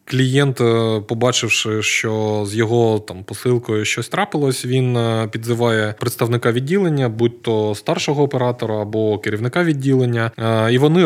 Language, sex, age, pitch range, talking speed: Ukrainian, male, 20-39, 115-145 Hz, 120 wpm